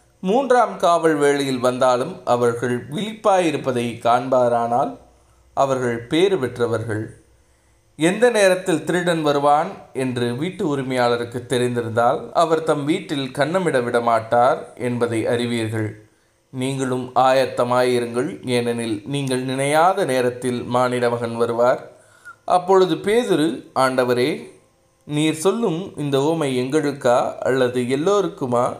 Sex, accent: male, native